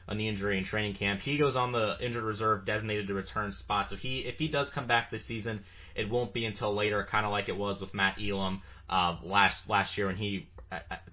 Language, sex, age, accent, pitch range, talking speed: English, male, 30-49, American, 95-115 Hz, 245 wpm